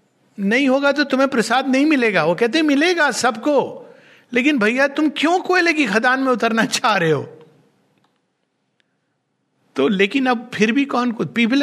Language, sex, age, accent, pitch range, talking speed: Hindi, male, 50-69, native, 215-275 Hz, 160 wpm